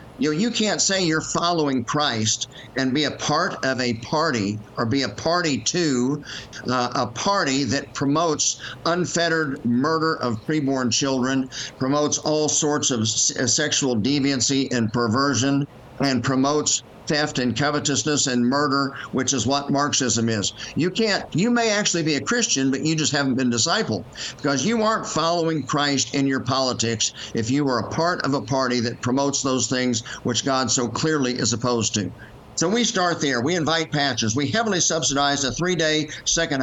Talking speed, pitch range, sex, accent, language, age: 175 wpm, 125-155 Hz, male, American, English, 50-69